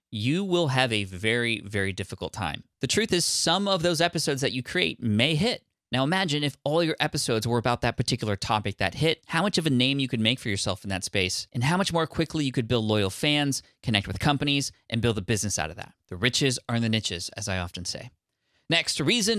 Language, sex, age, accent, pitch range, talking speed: English, male, 20-39, American, 110-145 Hz, 240 wpm